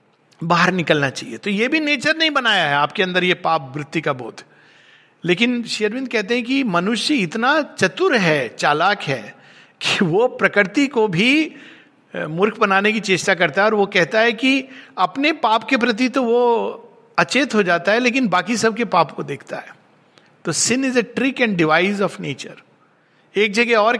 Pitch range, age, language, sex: 175-245 Hz, 50-69, Hindi, male